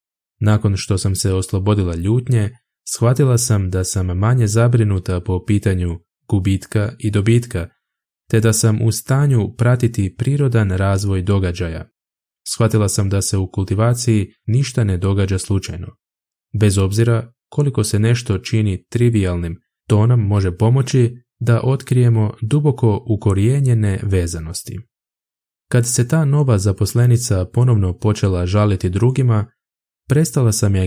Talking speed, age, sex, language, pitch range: 125 wpm, 20-39, male, Croatian, 95-120 Hz